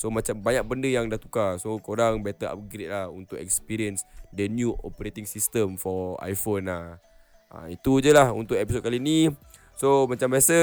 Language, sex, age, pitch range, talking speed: Malay, male, 20-39, 105-140 Hz, 180 wpm